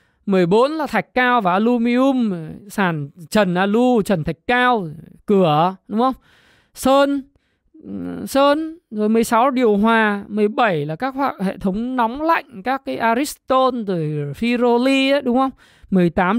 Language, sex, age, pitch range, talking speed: Vietnamese, male, 20-39, 190-255 Hz, 135 wpm